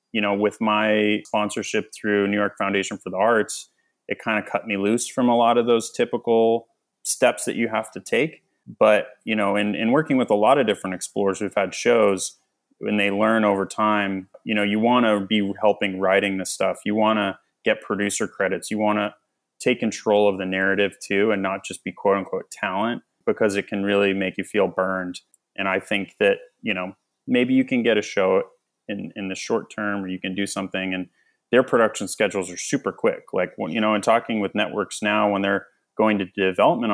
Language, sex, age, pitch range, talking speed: English, male, 20-39, 95-110 Hz, 215 wpm